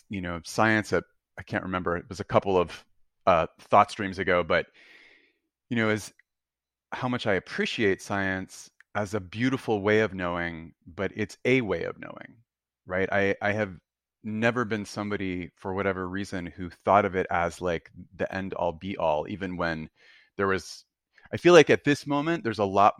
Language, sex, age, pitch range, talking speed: English, male, 30-49, 90-110 Hz, 185 wpm